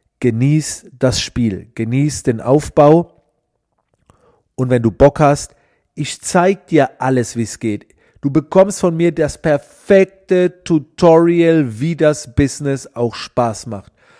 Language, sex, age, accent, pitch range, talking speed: German, male, 40-59, German, 120-150 Hz, 130 wpm